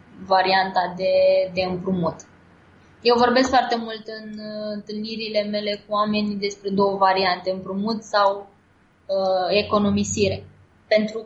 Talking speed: 110 wpm